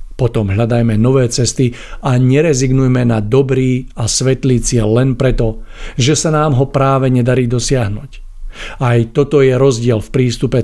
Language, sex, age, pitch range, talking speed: Czech, male, 50-69, 115-135 Hz, 145 wpm